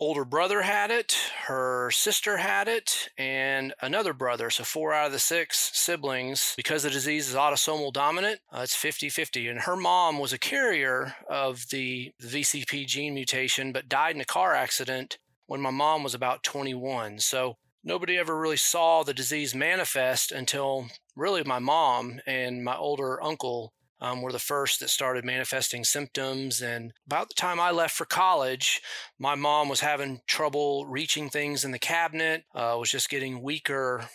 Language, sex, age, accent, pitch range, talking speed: English, male, 30-49, American, 125-150 Hz, 170 wpm